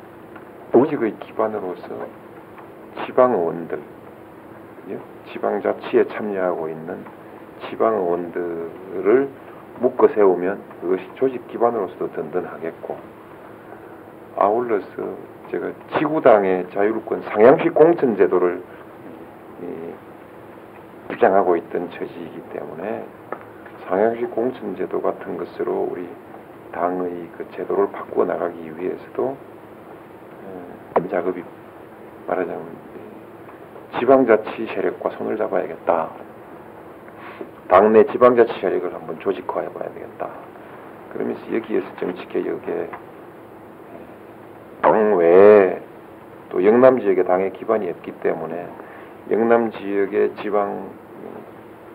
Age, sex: 50-69, male